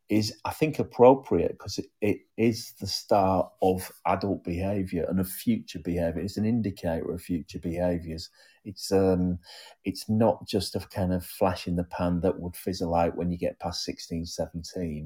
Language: English